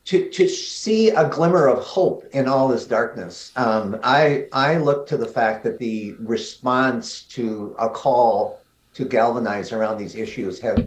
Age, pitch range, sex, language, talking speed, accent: 50-69, 105-130 Hz, male, English, 165 wpm, American